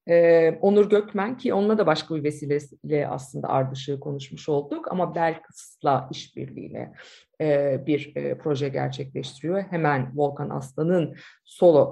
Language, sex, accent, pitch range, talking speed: Turkish, female, native, 150-205 Hz, 130 wpm